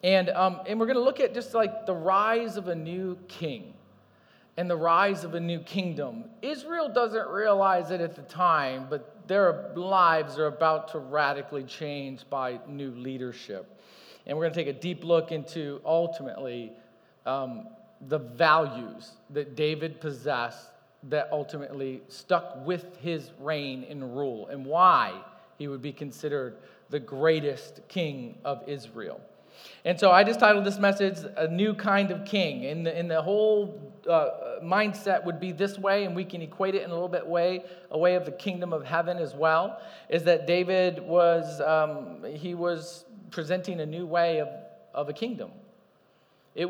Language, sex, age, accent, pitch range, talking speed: English, male, 40-59, American, 150-190 Hz, 170 wpm